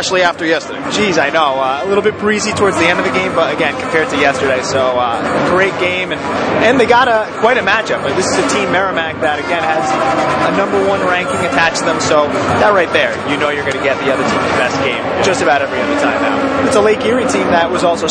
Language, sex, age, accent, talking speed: English, male, 30-49, American, 260 wpm